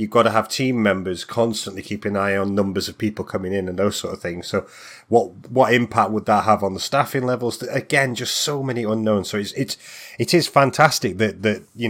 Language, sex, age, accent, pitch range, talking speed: English, male, 30-49, British, 95-115 Hz, 230 wpm